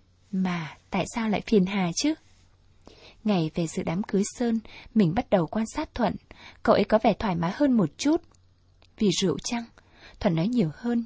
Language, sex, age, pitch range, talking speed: Vietnamese, female, 20-39, 185-235 Hz, 190 wpm